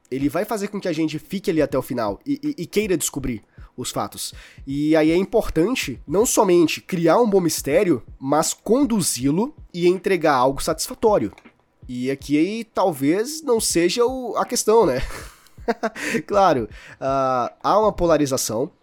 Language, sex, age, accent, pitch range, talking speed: Portuguese, male, 20-39, Brazilian, 145-200 Hz, 155 wpm